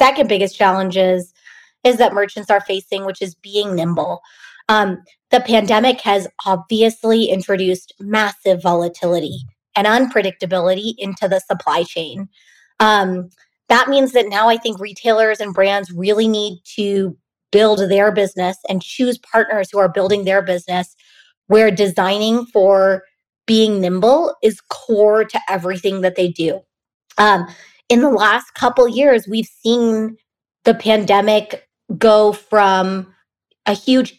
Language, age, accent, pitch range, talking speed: English, 20-39, American, 190-225 Hz, 135 wpm